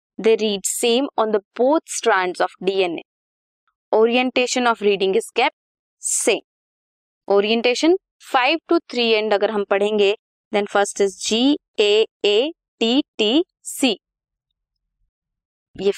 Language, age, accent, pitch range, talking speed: Hindi, 20-39, native, 205-310 Hz, 125 wpm